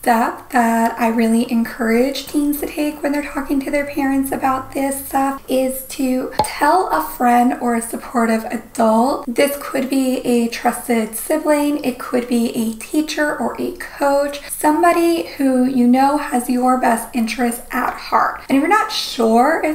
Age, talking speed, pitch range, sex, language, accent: 10-29, 170 wpm, 235-300 Hz, female, English, American